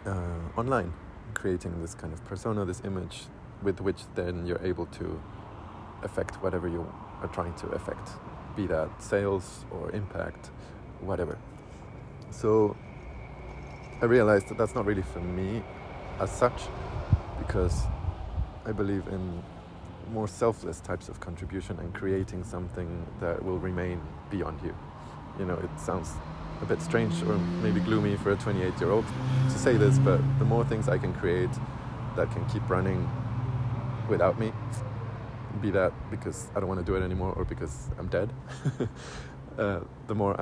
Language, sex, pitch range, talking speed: English, male, 90-115 Hz, 155 wpm